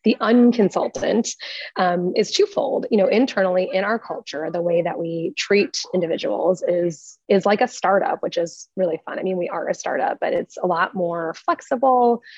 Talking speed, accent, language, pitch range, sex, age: 185 wpm, American, English, 170-215 Hz, female, 20-39